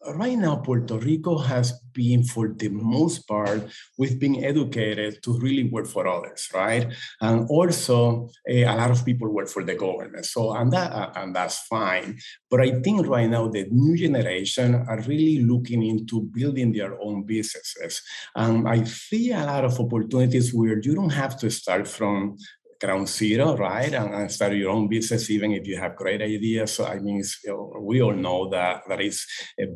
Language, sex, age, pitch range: English, male, 50-69, 105-125 Hz